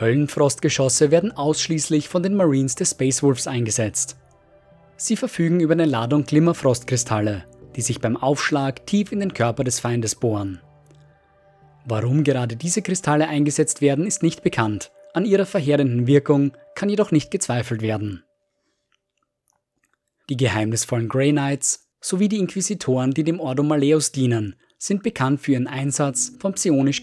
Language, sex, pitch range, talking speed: German, male, 120-160 Hz, 140 wpm